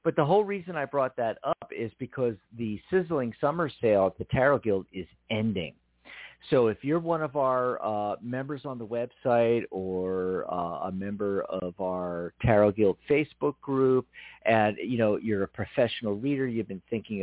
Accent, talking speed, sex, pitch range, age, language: American, 185 wpm, male, 100-125 Hz, 50-69, English